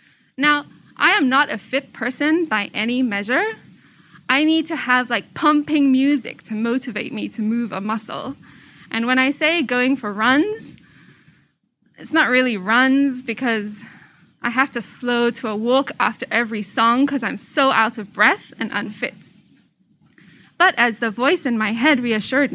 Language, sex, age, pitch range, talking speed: English, female, 20-39, 215-280 Hz, 165 wpm